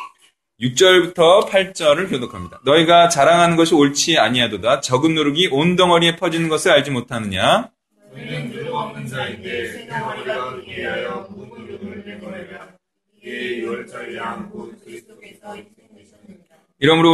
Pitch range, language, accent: 140-215 Hz, Korean, native